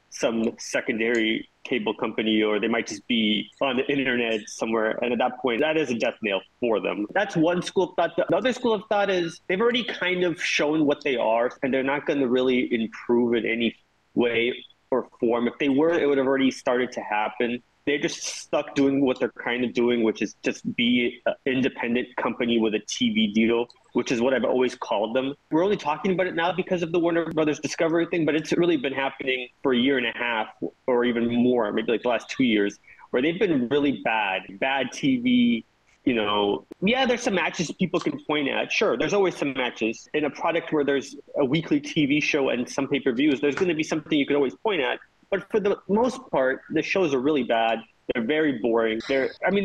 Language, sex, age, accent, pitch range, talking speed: English, male, 20-39, American, 120-170 Hz, 225 wpm